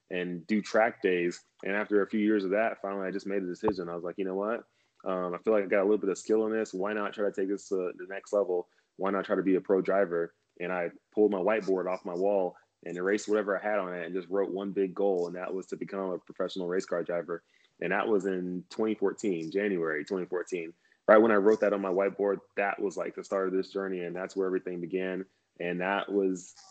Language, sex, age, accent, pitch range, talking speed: English, male, 20-39, American, 90-100 Hz, 260 wpm